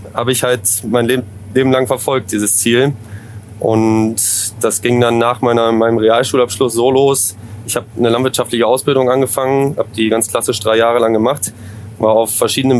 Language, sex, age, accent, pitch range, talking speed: German, male, 20-39, German, 110-130 Hz, 175 wpm